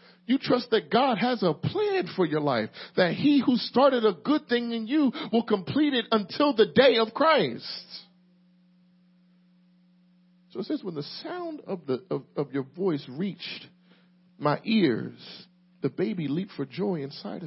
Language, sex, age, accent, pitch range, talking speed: English, male, 50-69, American, 180-245 Hz, 165 wpm